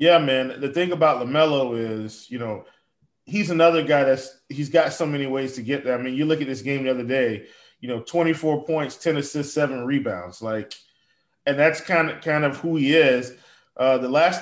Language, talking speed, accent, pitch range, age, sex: English, 210 wpm, American, 130-165 Hz, 20-39, male